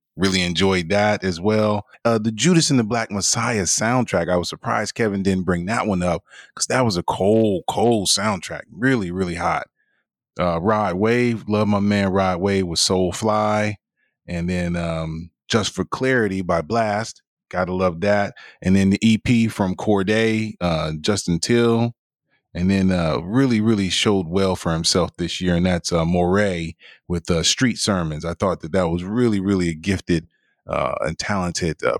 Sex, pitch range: male, 90-105 Hz